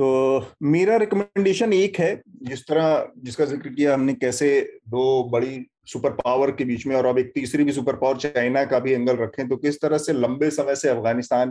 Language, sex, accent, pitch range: Hindi, male, native, 120-160 Hz